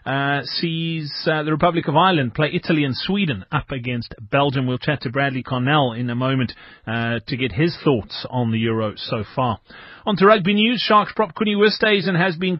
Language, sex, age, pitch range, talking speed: English, male, 30-49, 125-175 Hz, 200 wpm